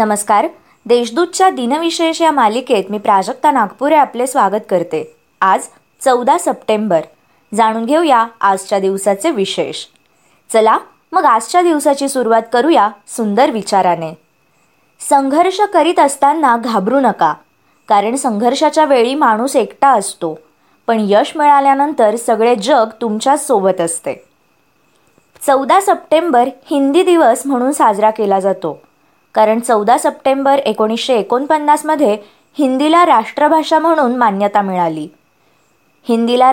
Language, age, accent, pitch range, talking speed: Marathi, 20-39, native, 215-290 Hz, 105 wpm